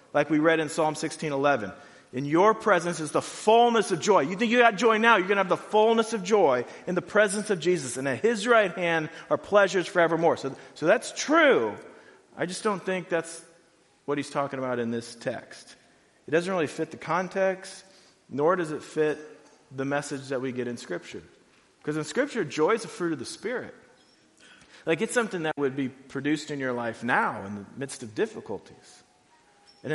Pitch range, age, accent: 130-175 Hz, 40-59, American